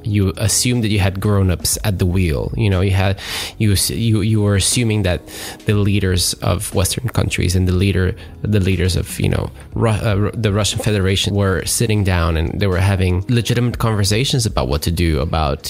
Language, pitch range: English, 90-110 Hz